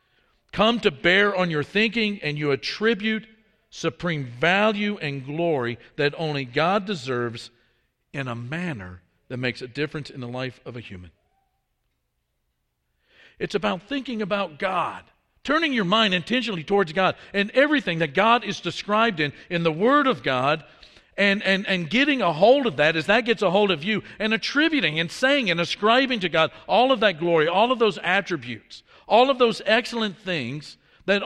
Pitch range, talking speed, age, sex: 145-205 Hz, 175 wpm, 50-69, male